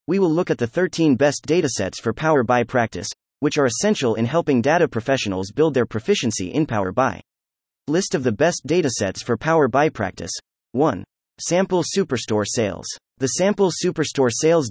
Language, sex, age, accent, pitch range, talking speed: English, male, 30-49, American, 105-165 Hz, 170 wpm